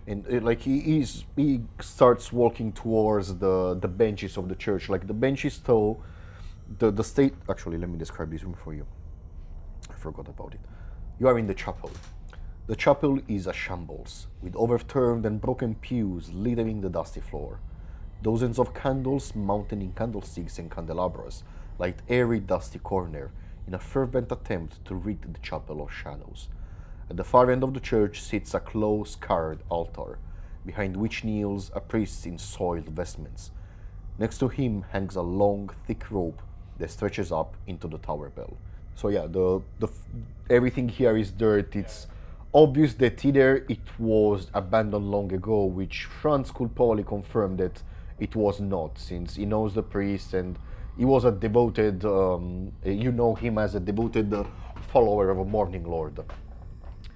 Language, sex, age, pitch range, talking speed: English, male, 30-49, 90-110 Hz, 165 wpm